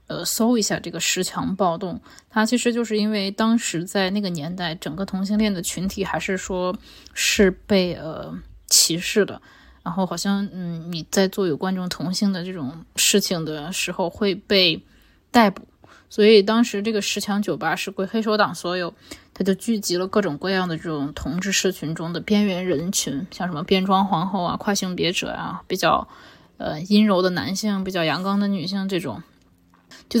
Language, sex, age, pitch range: Chinese, female, 10-29, 175-205 Hz